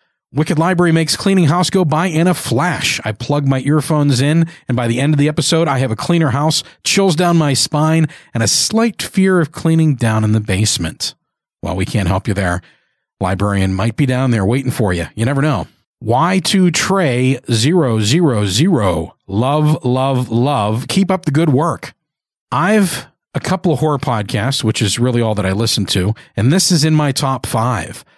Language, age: English, 40-59